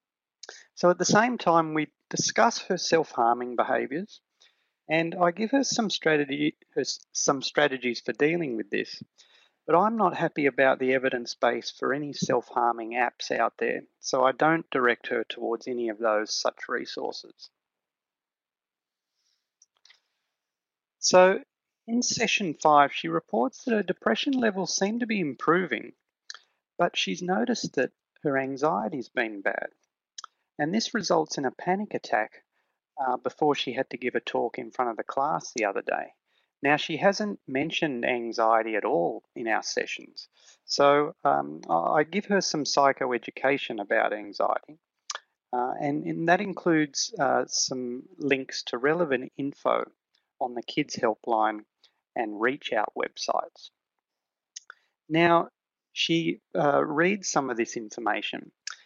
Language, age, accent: English, 30-49, Australian